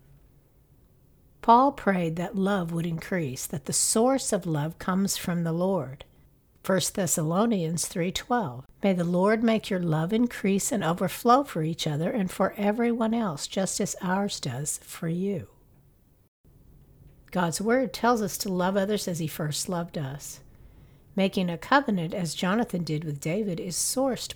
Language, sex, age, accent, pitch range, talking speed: English, female, 60-79, American, 165-205 Hz, 155 wpm